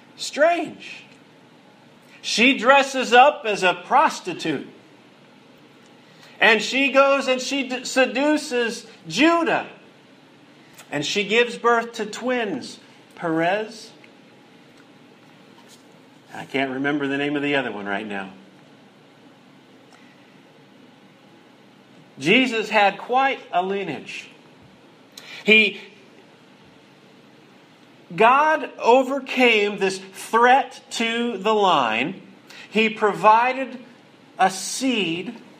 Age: 50-69